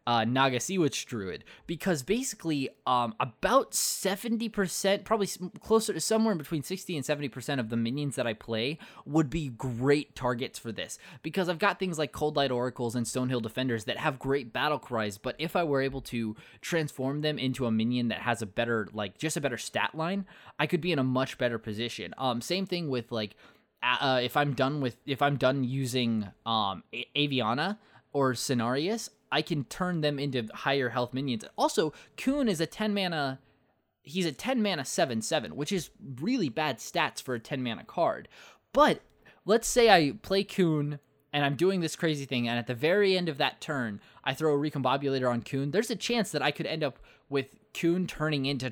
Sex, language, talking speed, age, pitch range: male, English, 200 wpm, 20-39, 125-170 Hz